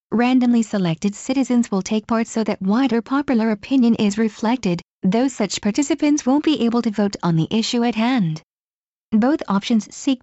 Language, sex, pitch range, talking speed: English, female, 190-240 Hz, 170 wpm